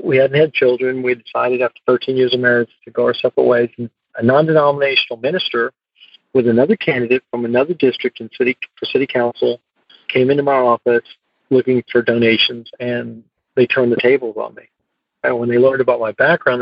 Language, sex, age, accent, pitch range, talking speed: English, male, 50-69, American, 120-135 Hz, 190 wpm